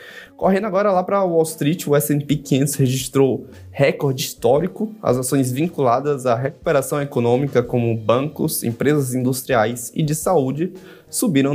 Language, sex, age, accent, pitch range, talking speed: Portuguese, male, 20-39, Brazilian, 125-160 Hz, 135 wpm